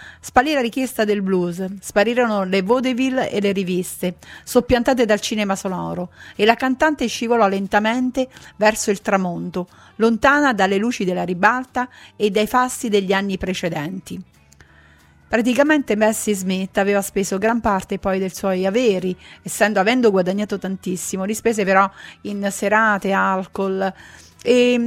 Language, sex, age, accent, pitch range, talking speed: Italian, female, 40-59, native, 190-235 Hz, 135 wpm